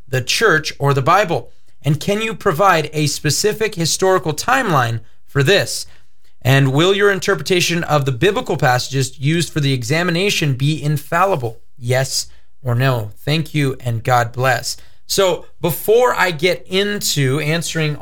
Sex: male